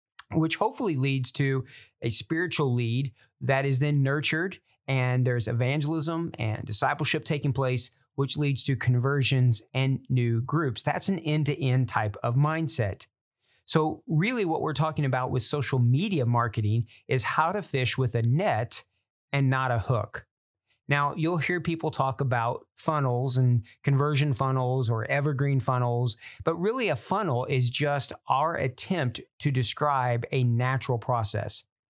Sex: male